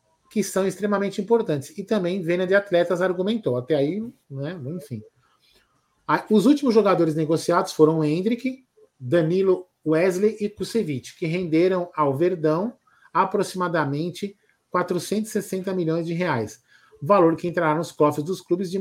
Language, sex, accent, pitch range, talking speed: Portuguese, male, Brazilian, 150-190 Hz, 135 wpm